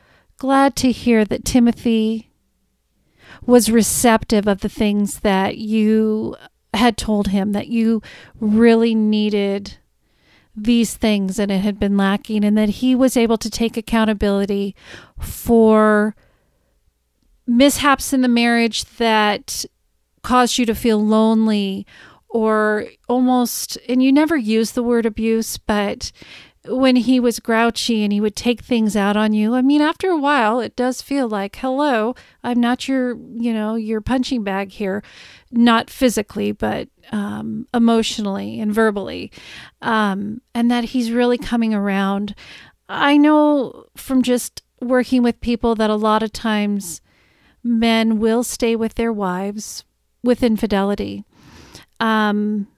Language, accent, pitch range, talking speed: English, American, 210-245 Hz, 140 wpm